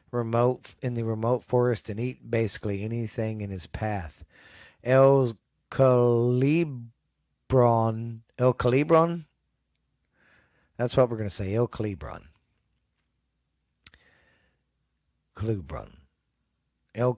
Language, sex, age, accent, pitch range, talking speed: English, male, 50-69, American, 95-120 Hz, 85 wpm